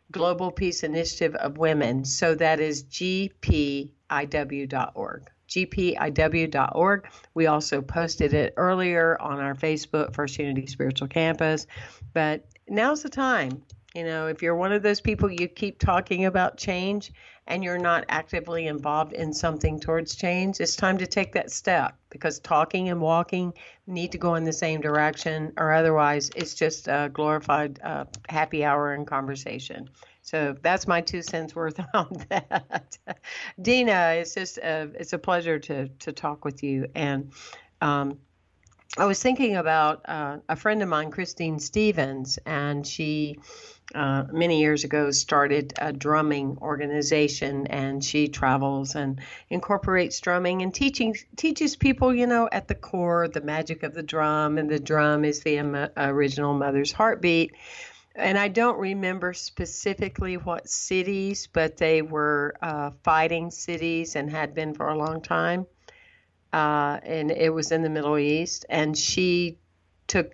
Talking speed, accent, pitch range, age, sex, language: 150 wpm, American, 145-180 Hz, 50-69, female, English